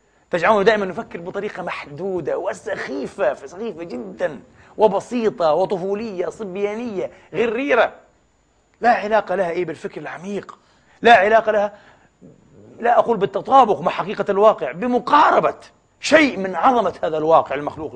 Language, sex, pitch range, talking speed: Arabic, male, 190-235 Hz, 115 wpm